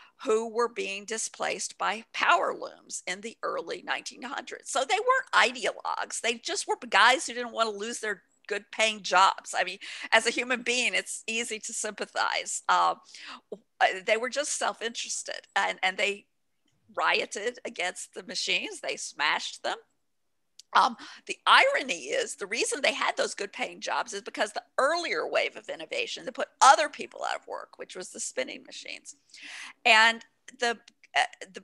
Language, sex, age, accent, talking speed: English, female, 50-69, American, 165 wpm